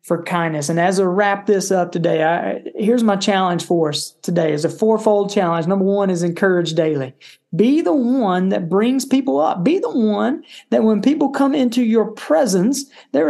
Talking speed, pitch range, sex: 190 wpm, 170-230 Hz, male